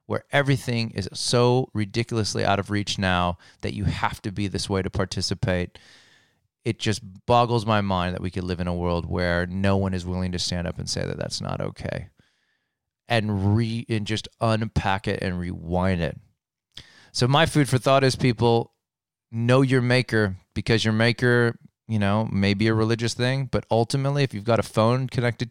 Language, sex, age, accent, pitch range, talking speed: English, male, 30-49, American, 95-120 Hz, 185 wpm